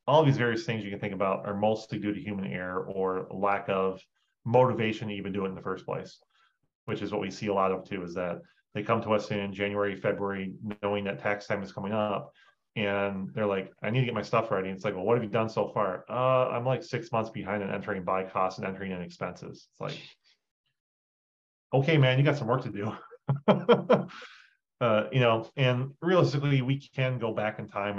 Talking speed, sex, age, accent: 225 wpm, male, 30-49, American